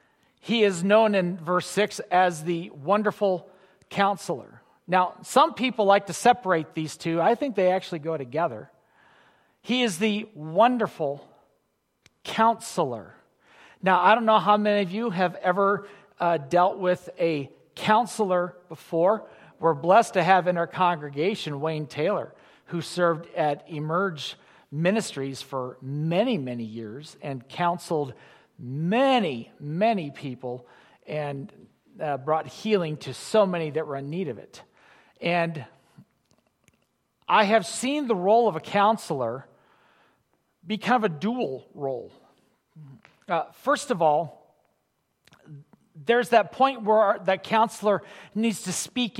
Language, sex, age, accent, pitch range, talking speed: English, male, 40-59, American, 155-215 Hz, 135 wpm